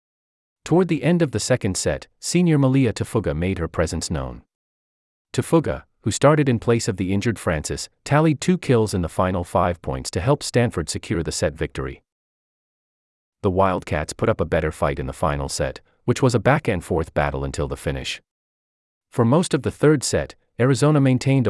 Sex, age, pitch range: male, 40-59, 80-125 Hz